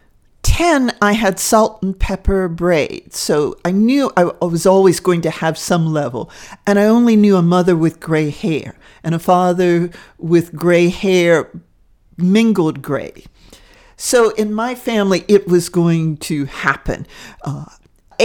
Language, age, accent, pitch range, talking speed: English, 50-69, American, 160-210 Hz, 150 wpm